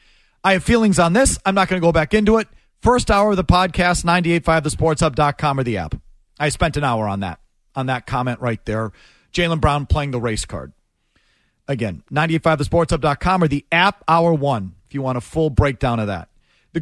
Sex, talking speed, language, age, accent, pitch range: male, 205 wpm, English, 40-59, American, 145-195 Hz